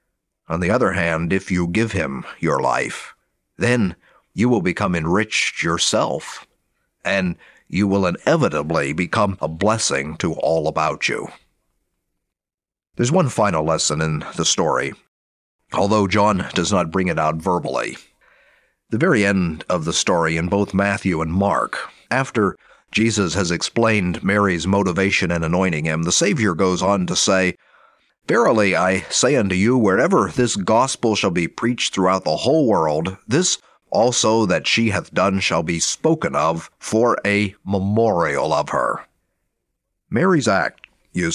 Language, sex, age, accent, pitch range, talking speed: English, male, 50-69, American, 85-110 Hz, 145 wpm